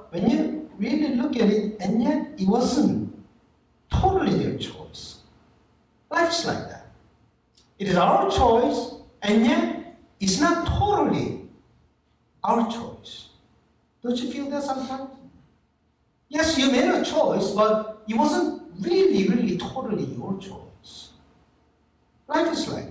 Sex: male